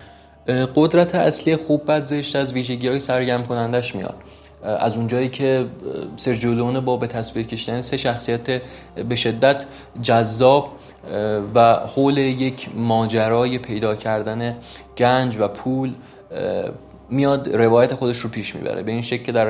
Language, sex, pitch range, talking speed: Persian, male, 110-130 Hz, 135 wpm